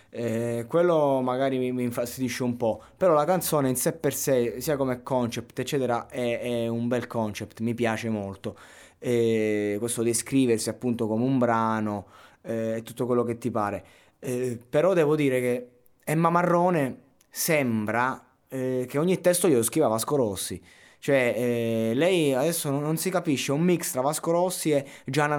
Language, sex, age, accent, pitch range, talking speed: Italian, male, 20-39, native, 110-140 Hz, 170 wpm